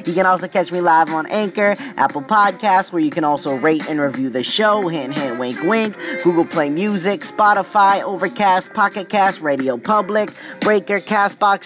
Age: 20-39